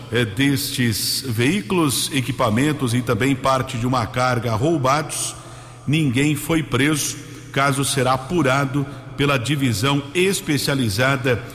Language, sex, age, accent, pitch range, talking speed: Portuguese, male, 50-69, Brazilian, 130-145 Hz, 105 wpm